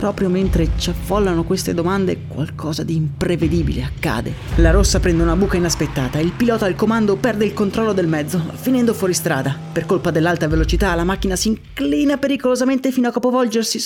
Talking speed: 175 wpm